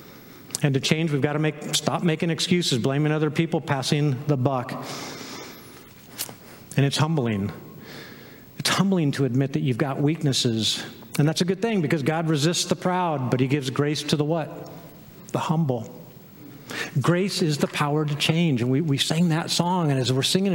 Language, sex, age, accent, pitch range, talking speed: English, male, 50-69, American, 140-195 Hz, 180 wpm